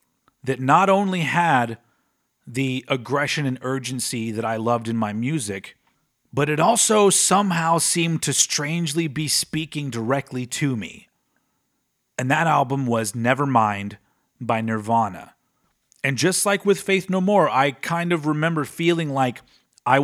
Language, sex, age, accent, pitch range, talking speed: English, male, 30-49, American, 115-155 Hz, 140 wpm